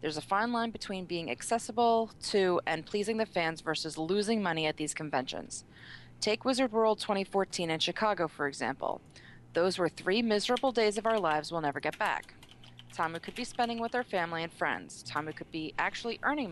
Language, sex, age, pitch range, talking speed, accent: English, female, 30-49, 155-205 Hz, 195 wpm, American